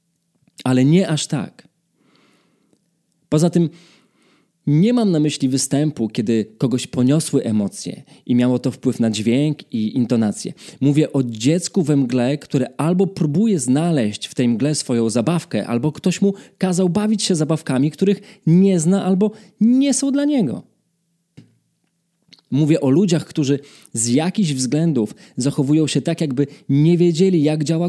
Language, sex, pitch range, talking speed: English, male, 140-190 Hz, 145 wpm